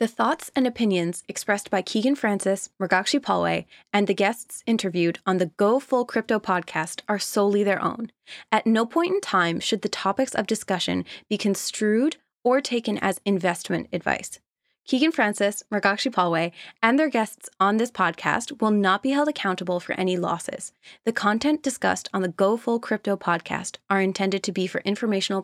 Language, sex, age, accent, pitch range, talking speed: English, female, 20-39, American, 150-220 Hz, 175 wpm